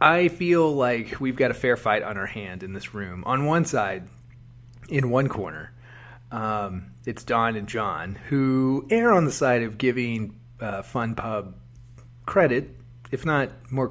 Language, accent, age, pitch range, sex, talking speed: English, American, 30-49, 110-130 Hz, male, 170 wpm